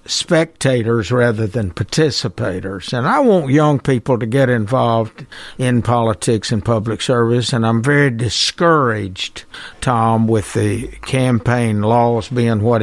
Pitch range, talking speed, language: 110-135 Hz, 130 wpm, English